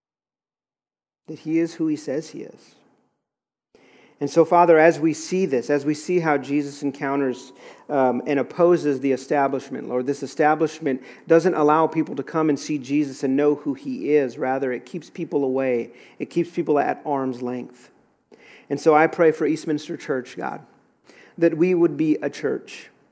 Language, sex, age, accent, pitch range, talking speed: English, male, 50-69, American, 130-155 Hz, 175 wpm